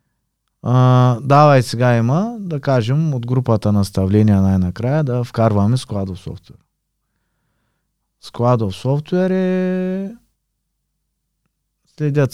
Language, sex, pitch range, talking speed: Bulgarian, male, 100-130 Hz, 90 wpm